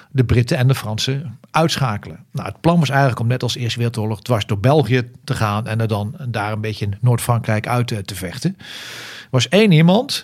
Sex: male